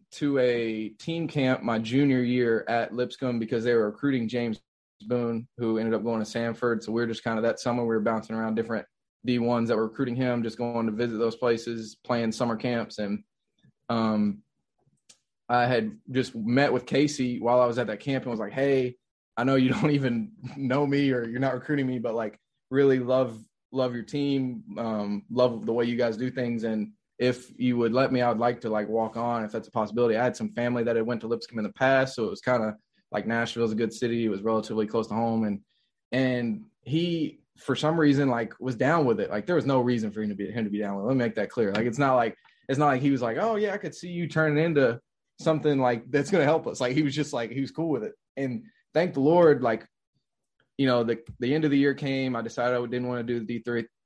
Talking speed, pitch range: 250 wpm, 115-135 Hz